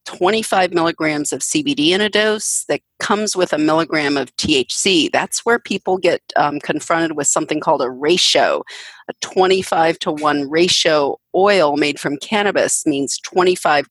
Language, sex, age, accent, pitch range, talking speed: English, female, 40-59, American, 155-210 Hz, 155 wpm